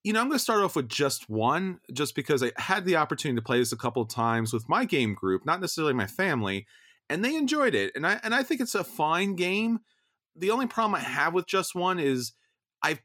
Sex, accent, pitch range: male, American, 120-190 Hz